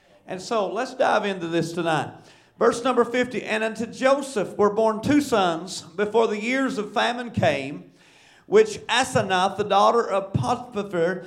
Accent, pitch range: American, 195-245 Hz